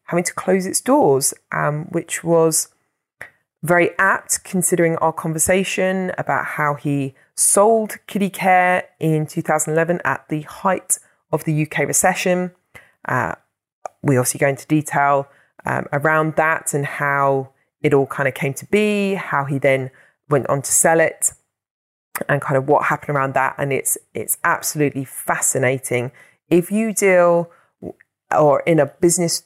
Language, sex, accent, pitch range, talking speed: English, female, British, 140-175 Hz, 150 wpm